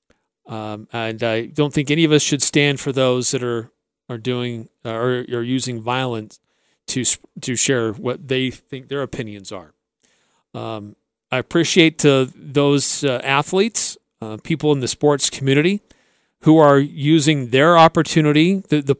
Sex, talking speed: male, 160 wpm